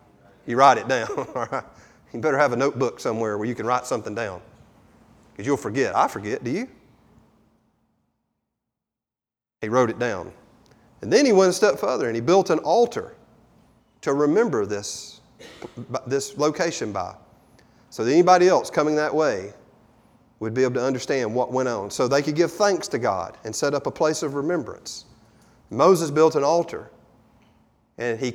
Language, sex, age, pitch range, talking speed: English, male, 40-59, 120-185 Hz, 170 wpm